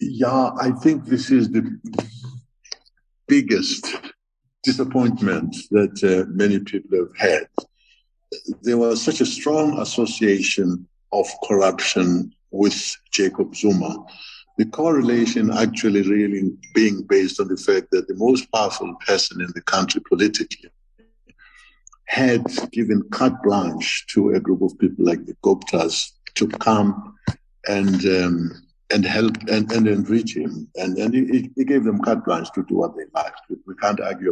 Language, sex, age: English, male, 60-79